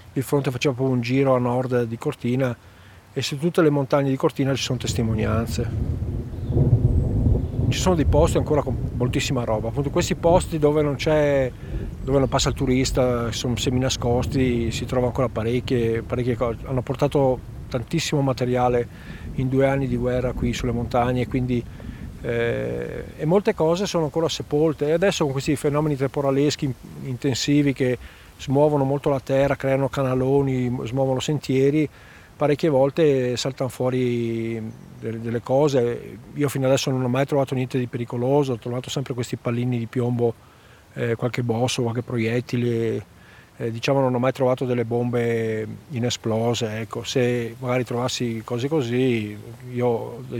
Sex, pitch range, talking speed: male, 115-135 Hz, 150 wpm